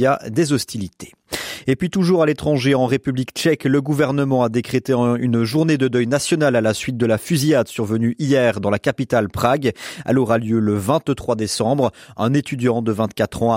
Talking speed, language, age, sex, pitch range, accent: 185 wpm, French, 30-49, male, 115-140 Hz, French